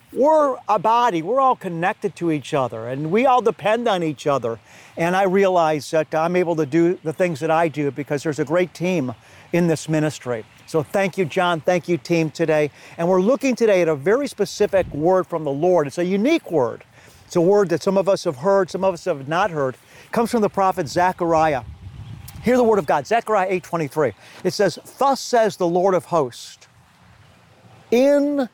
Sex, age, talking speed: male, 50-69, 205 wpm